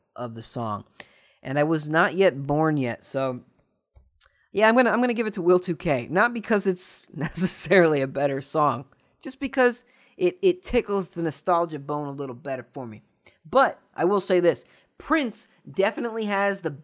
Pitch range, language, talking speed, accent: 145-220 Hz, English, 180 wpm, American